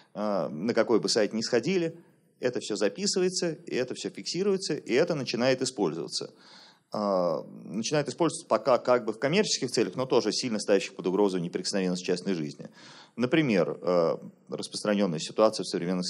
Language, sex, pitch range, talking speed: Russian, male, 100-165 Hz, 140 wpm